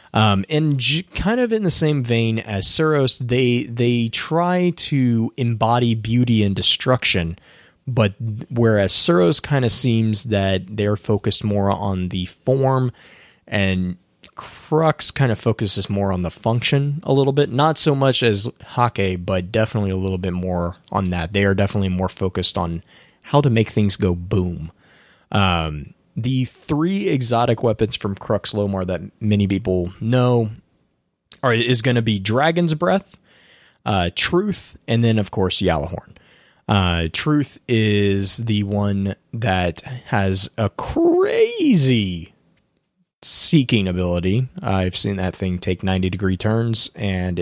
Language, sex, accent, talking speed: English, male, American, 145 wpm